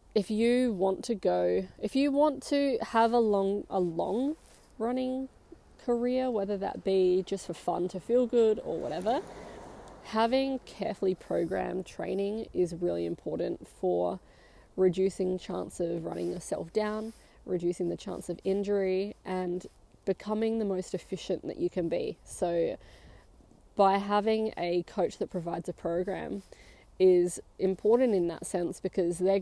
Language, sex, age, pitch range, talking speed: English, female, 20-39, 175-200 Hz, 145 wpm